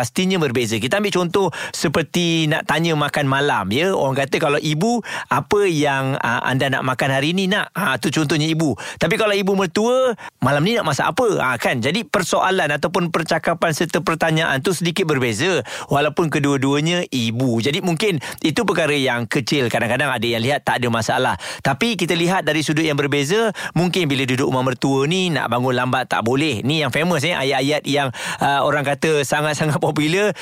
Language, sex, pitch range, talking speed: Malay, male, 130-165 Hz, 185 wpm